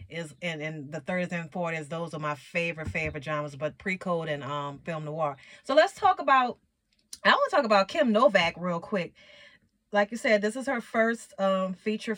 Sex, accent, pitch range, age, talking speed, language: female, American, 175-225 Hz, 30-49, 200 wpm, English